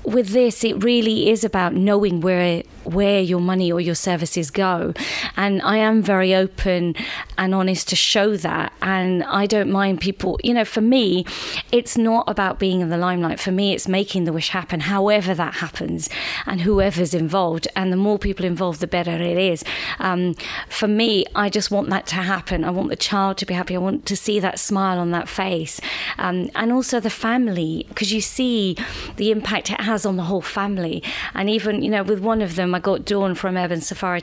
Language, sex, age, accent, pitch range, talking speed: English, female, 30-49, British, 180-210 Hz, 205 wpm